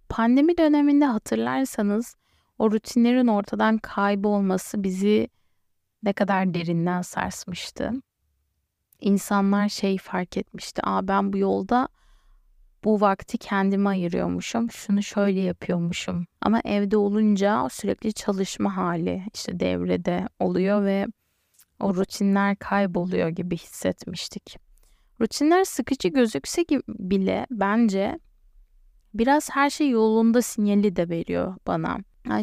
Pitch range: 190-245 Hz